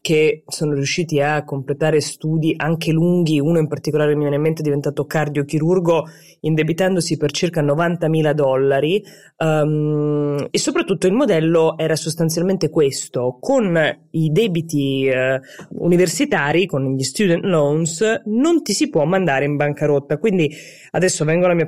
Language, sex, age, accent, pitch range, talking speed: Italian, female, 20-39, native, 145-180 Hz, 140 wpm